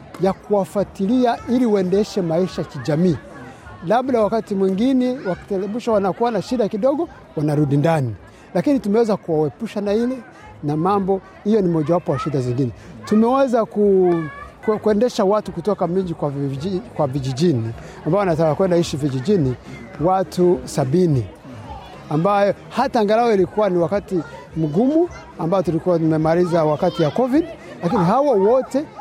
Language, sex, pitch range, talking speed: Swahili, male, 160-210 Hz, 125 wpm